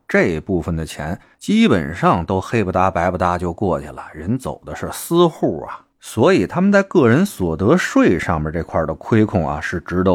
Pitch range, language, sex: 85-125 Hz, Chinese, male